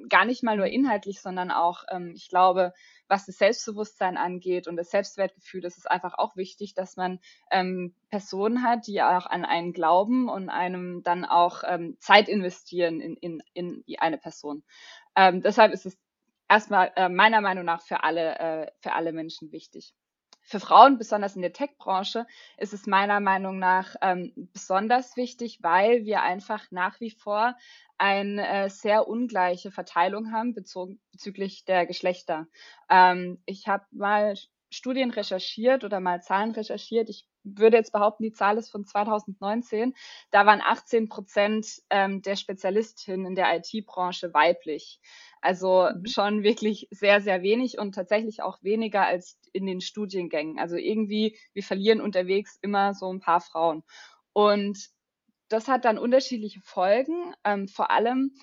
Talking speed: 155 wpm